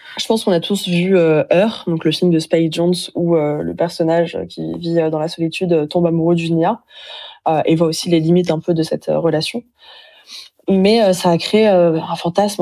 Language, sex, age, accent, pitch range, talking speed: French, female, 20-39, French, 165-200 Hz, 195 wpm